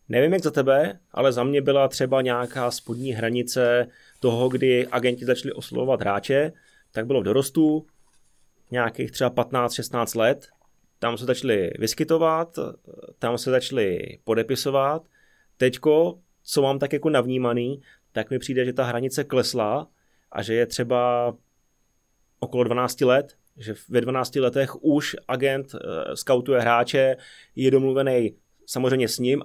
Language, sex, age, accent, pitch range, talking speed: Czech, male, 30-49, native, 120-135 Hz, 135 wpm